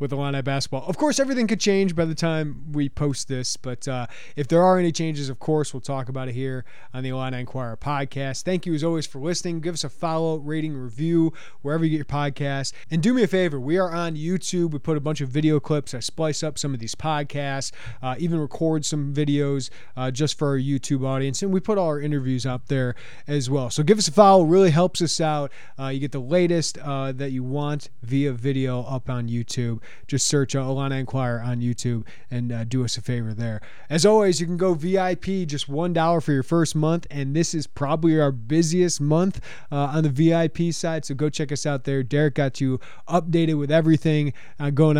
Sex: male